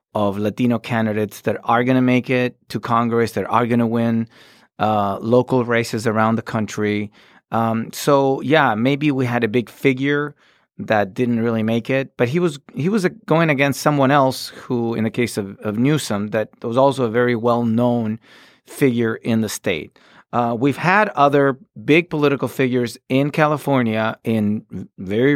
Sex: male